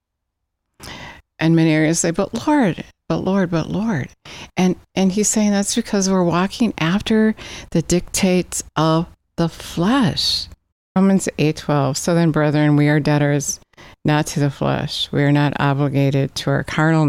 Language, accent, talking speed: English, American, 155 wpm